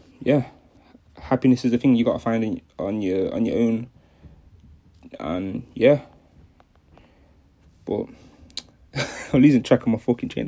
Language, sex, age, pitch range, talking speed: English, male, 20-39, 110-130 Hz, 145 wpm